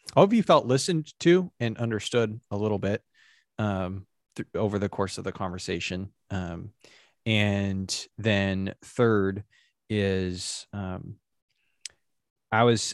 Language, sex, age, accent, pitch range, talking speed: English, male, 20-39, American, 100-115 Hz, 120 wpm